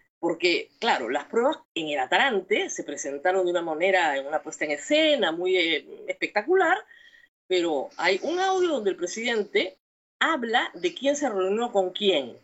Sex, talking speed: female, 165 wpm